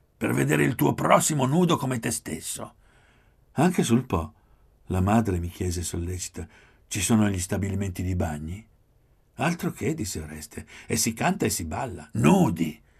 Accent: native